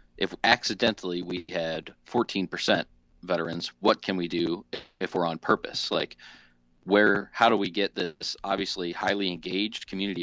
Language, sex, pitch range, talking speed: English, male, 80-100 Hz, 145 wpm